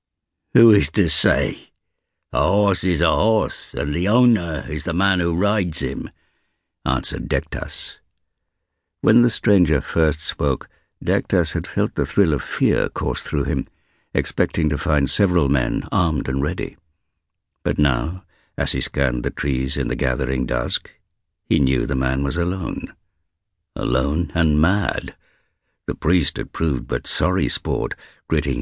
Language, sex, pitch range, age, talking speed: English, male, 70-90 Hz, 60-79, 150 wpm